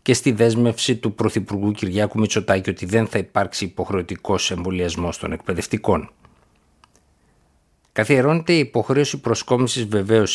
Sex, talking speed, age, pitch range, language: male, 115 wpm, 50-69, 90-115 Hz, Greek